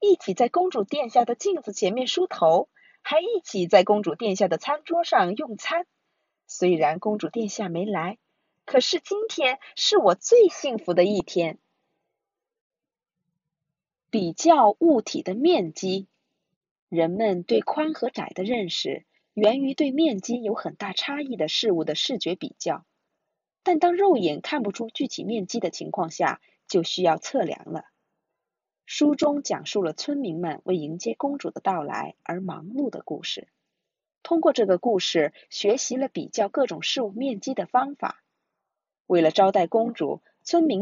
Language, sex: Chinese, female